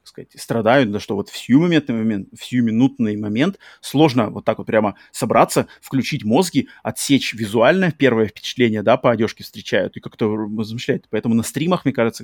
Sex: male